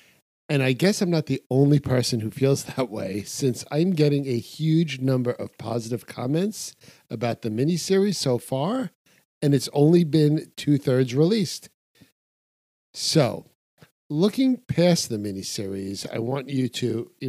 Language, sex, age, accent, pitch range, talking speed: English, male, 50-69, American, 115-150 Hz, 150 wpm